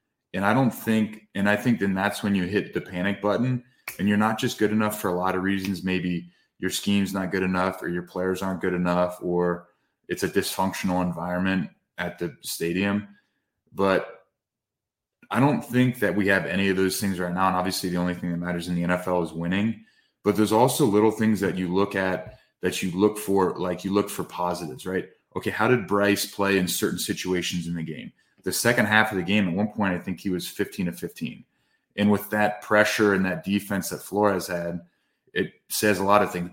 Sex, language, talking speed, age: male, English, 220 wpm, 20-39